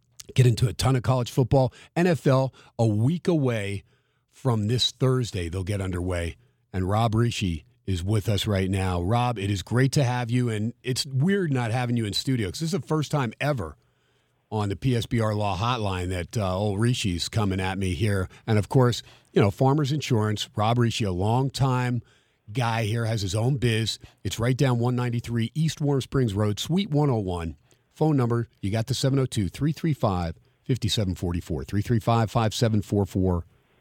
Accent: American